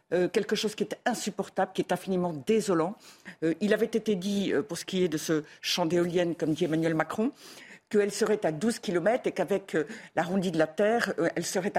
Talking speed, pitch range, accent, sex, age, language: 220 wpm, 180-225 Hz, French, female, 50-69, French